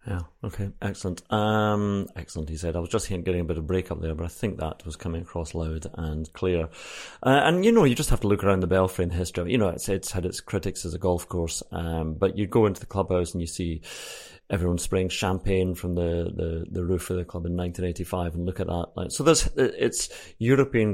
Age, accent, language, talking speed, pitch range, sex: 30-49, British, English, 245 wpm, 85-105 Hz, male